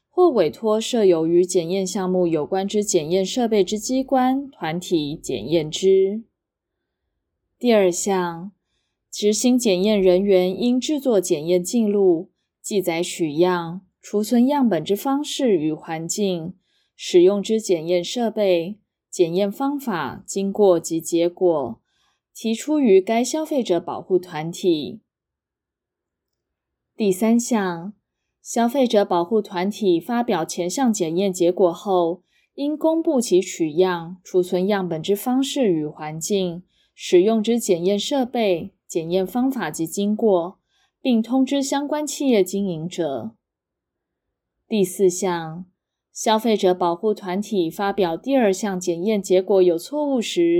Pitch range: 175-230 Hz